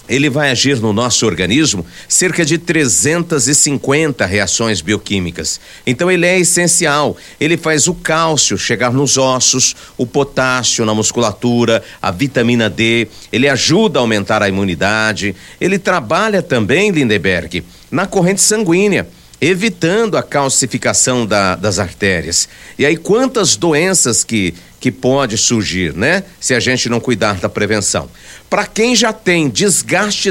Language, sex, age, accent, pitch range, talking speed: Portuguese, male, 60-79, Brazilian, 110-170 Hz, 135 wpm